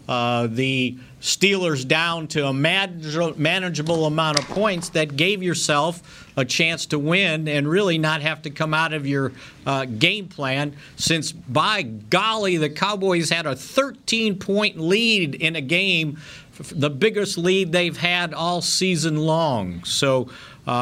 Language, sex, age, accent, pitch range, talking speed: English, male, 50-69, American, 140-165 Hz, 145 wpm